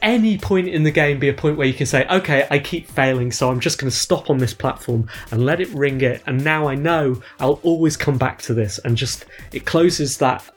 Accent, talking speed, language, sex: British, 255 wpm, English, male